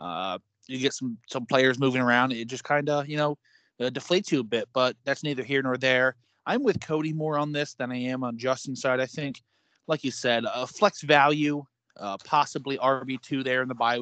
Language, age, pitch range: English, 30-49, 120-150 Hz